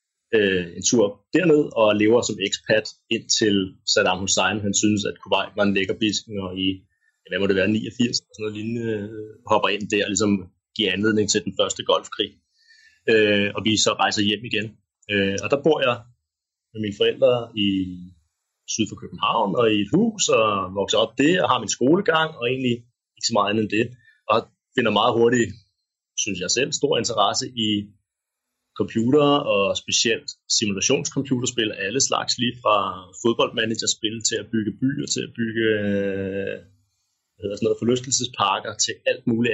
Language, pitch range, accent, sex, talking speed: Danish, 100-125 Hz, native, male, 160 wpm